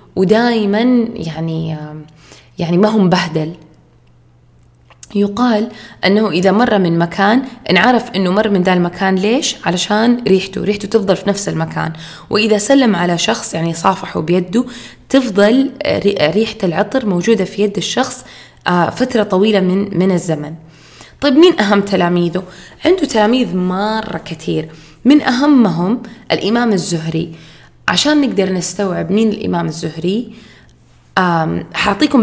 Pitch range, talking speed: 170-220 Hz, 120 wpm